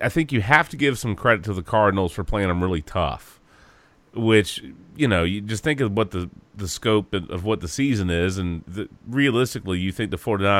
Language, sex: English, male